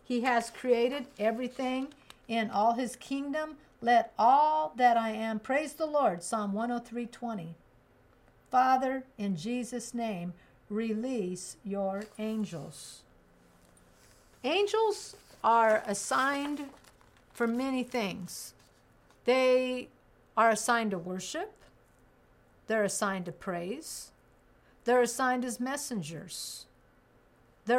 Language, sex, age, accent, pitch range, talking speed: English, female, 50-69, American, 205-250 Hz, 100 wpm